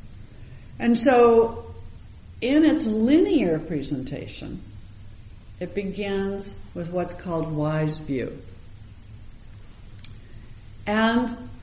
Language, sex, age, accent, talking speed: English, female, 60-79, American, 70 wpm